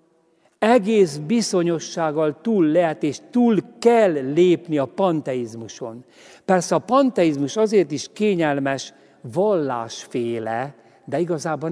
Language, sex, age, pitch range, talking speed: Hungarian, male, 60-79, 125-185 Hz, 95 wpm